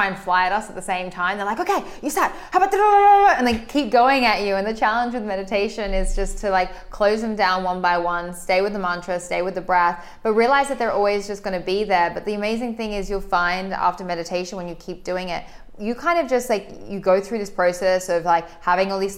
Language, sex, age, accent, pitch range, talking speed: English, female, 20-39, Australian, 175-200 Hz, 260 wpm